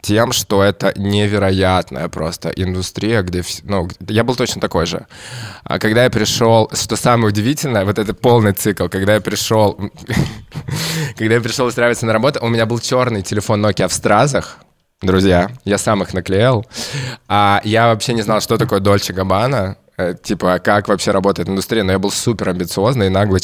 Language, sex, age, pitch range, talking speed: Russian, male, 20-39, 100-120 Hz, 170 wpm